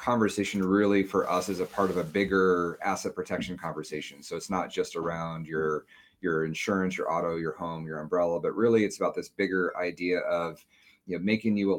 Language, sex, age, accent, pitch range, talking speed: English, male, 30-49, American, 80-95 Hz, 205 wpm